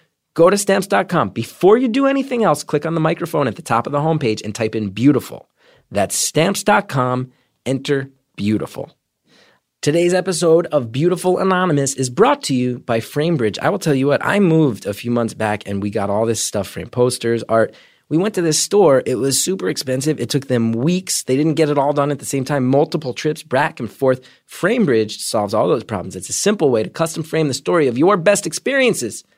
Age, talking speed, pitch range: 30-49, 210 wpm, 130-185 Hz